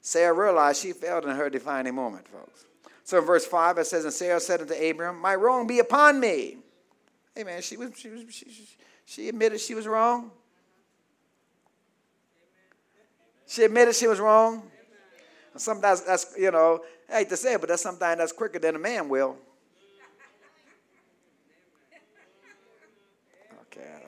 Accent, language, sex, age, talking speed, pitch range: American, English, male, 50-69, 140 wpm, 145-220 Hz